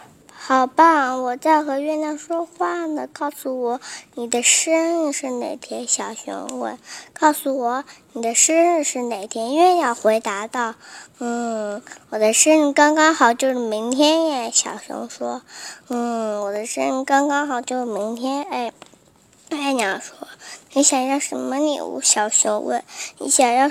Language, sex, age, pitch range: Chinese, male, 10-29, 250-310 Hz